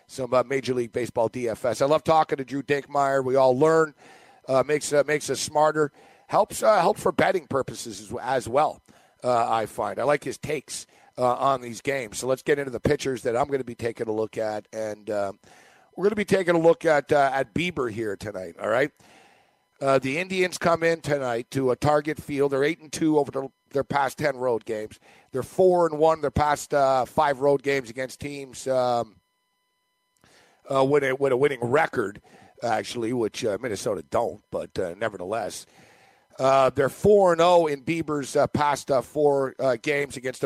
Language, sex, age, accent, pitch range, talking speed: English, male, 50-69, American, 130-160 Hz, 200 wpm